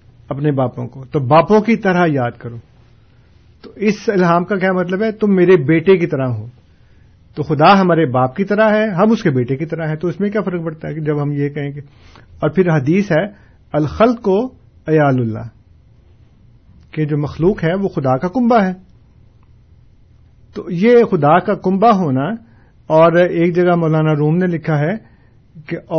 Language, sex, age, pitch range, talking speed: Urdu, male, 50-69, 125-180 Hz, 185 wpm